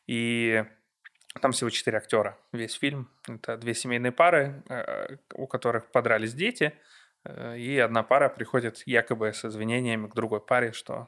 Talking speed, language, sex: 140 wpm, Ukrainian, male